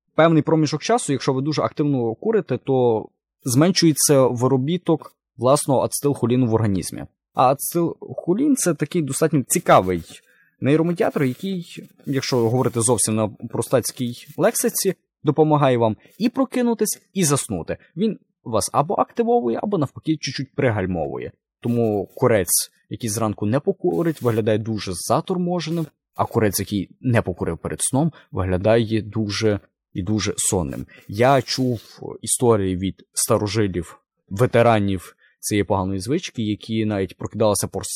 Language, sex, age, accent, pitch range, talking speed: Ukrainian, male, 20-39, native, 105-150 Hz, 125 wpm